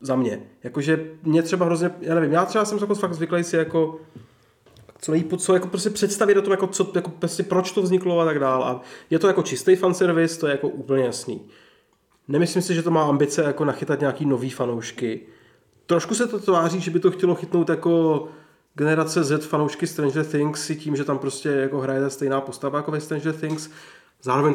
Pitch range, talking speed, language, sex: 135-160 Hz, 205 wpm, Czech, male